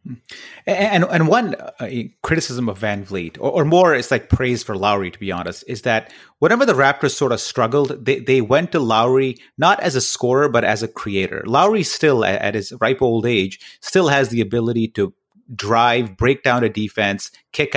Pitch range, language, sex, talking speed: 110-140 Hz, English, male, 190 wpm